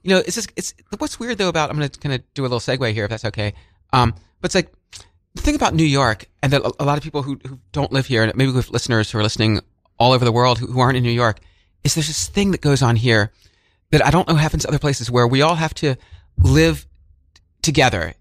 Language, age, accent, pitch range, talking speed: English, 30-49, American, 105-145 Hz, 275 wpm